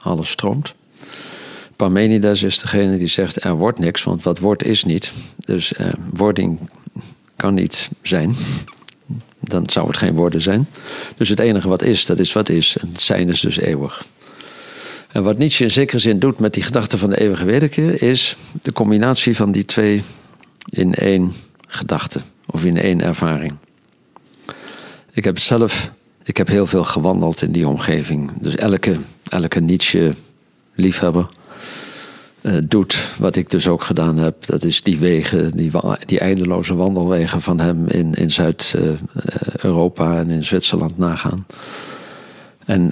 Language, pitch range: Dutch, 90-115 Hz